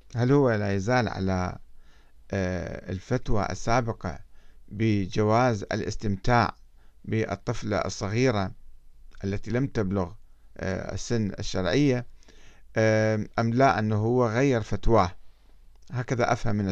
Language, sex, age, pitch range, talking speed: Arabic, male, 50-69, 100-130 Hz, 90 wpm